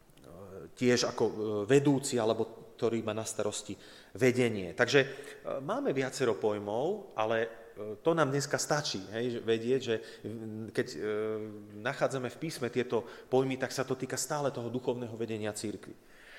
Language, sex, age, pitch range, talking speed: Slovak, male, 30-49, 115-150 Hz, 130 wpm